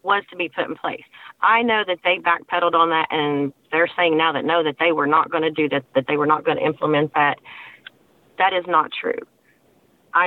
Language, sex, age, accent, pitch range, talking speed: English, female, 40-59, American, 155-180 Hz, 235 wpm